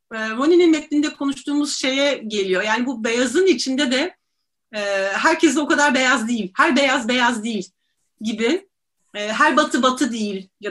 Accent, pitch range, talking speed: native, 220-285 Hz, 155 wpm